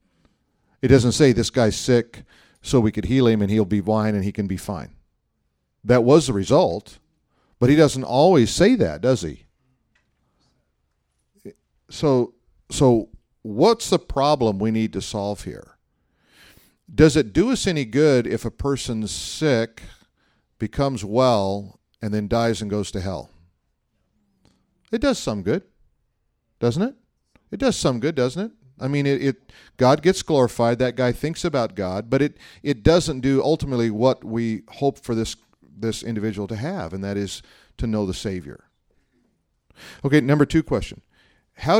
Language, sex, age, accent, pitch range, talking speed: English, male, 40-59, American, 100-140 Hz, 160 wpm